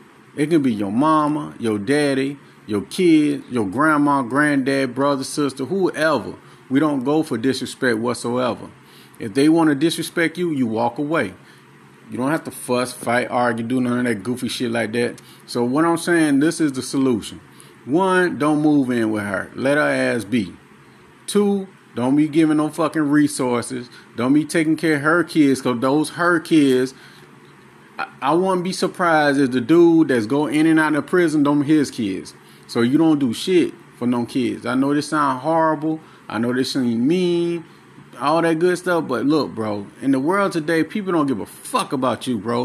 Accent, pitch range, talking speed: American, 125-165 Hz, 190 wpm